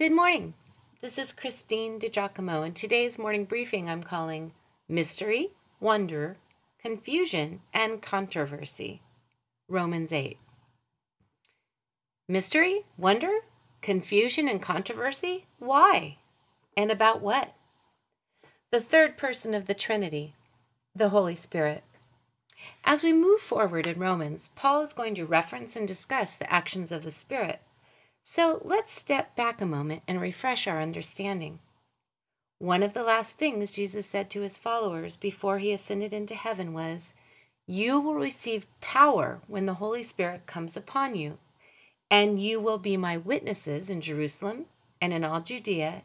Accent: American